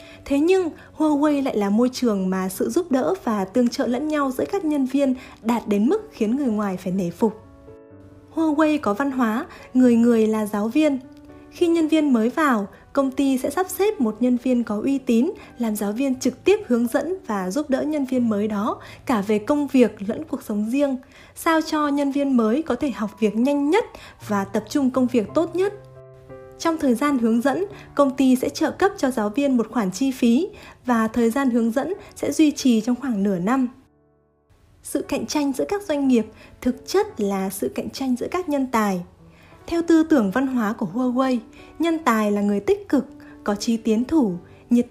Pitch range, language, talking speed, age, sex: 220-290 Hz, Vietnamese, 210 wpm, 20-39, female